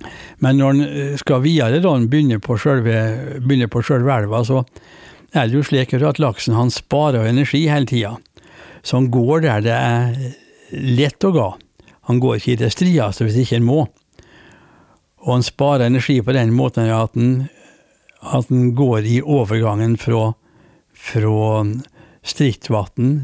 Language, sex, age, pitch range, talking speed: English, male, 60-79, 115-140 Hz, 160 wpm